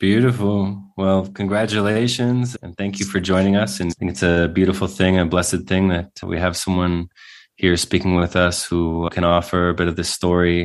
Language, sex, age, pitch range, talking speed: English, male, 20-39, 85-100 Hz, 195 wpm